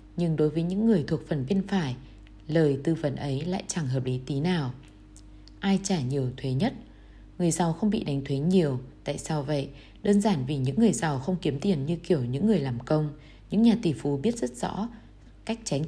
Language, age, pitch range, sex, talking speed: Vietnamese, 20-39, 140-190 Hz, female, 220 wpm